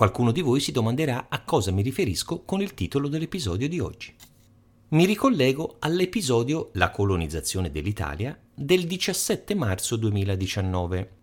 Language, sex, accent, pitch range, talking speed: Italian, male, native, 100-150 Hz, 135 wpm